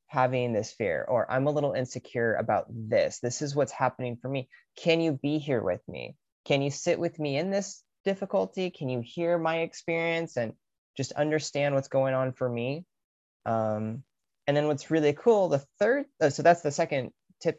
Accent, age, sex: American, 30-49, male